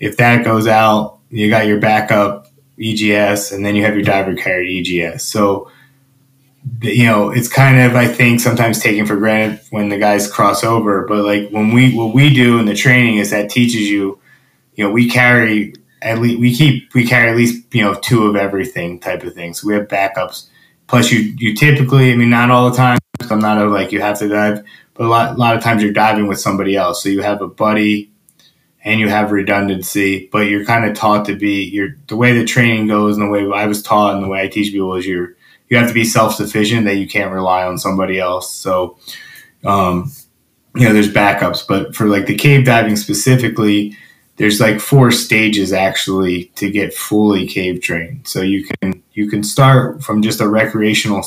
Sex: male